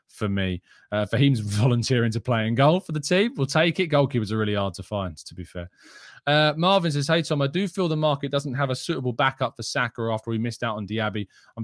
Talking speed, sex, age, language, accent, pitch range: 245 wpm, male, 20-39, English, British, 105-140 Hz